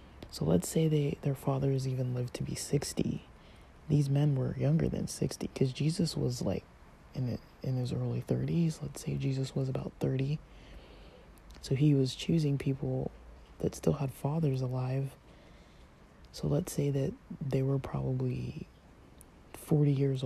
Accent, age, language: American, 20-39, English